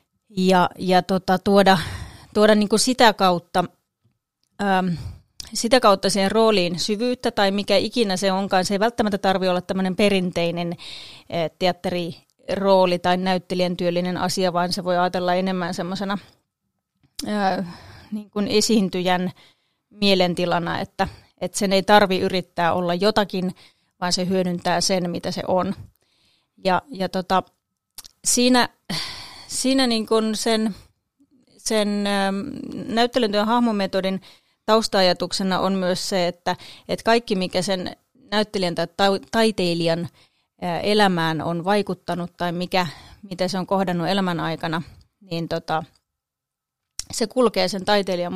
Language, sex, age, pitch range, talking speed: Finnish, female, 30-49, 180-205 Hz, 120 wpm